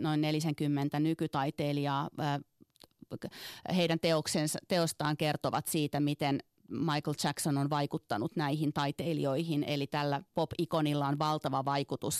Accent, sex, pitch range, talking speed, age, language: native, female, 145-165 Hz, 105 wpm, 30-49, Finnish